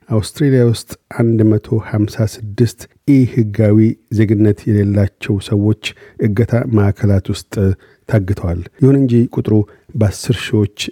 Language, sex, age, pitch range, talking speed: Amharic, male, 50-69, 105-130 Hz, 105 wpm